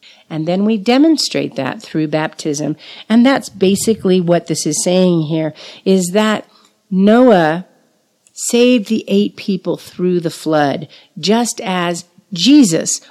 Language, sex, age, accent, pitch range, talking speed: English, female, 50-69, American, 160-230 Hz, 130 wpm